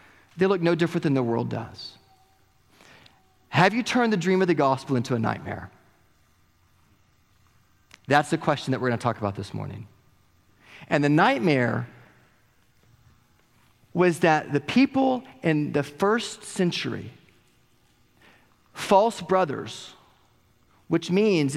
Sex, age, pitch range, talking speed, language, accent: male, 40-59, 115-180 Hz, 120 wpm, English, American